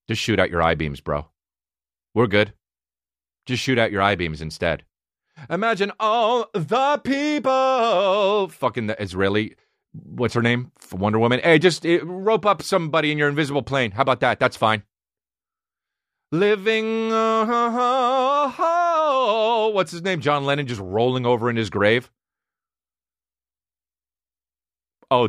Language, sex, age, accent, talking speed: English, male, 30-49, American, 130 wpm